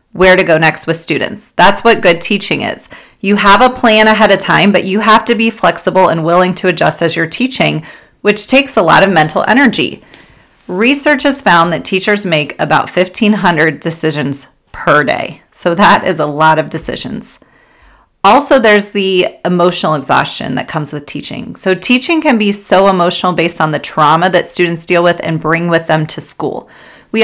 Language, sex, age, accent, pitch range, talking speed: English, female, 30-49, American, 165-210 Hz, 190 wpm